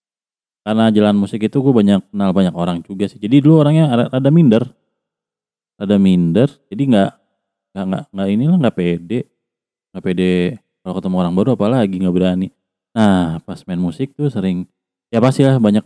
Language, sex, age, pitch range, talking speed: Indonesian, male, 30-49, 90-110 Hz, 170 wpm